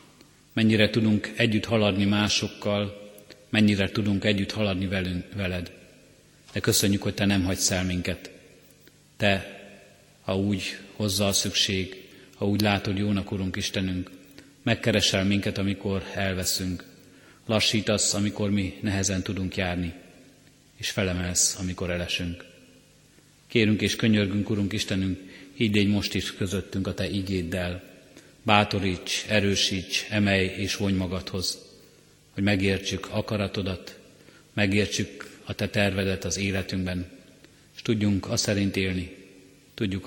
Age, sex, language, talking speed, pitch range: 30-49, male, Hungarian, 115 wpm, 95-105 Hz